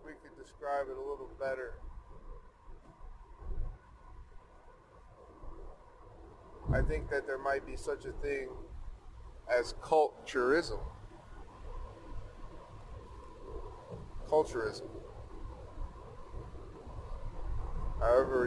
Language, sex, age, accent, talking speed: English, male, 30-49, American, 60 wpm